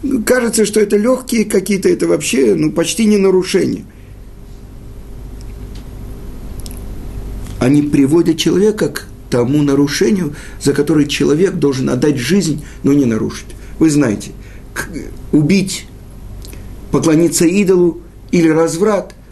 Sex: male